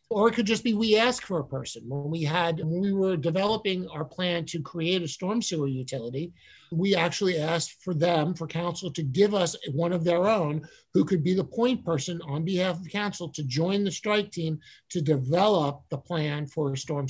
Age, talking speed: 50-69, 215 wpm